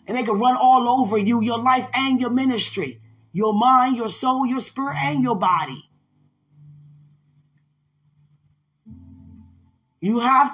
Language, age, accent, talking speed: English, 20-39, American, 130 wpm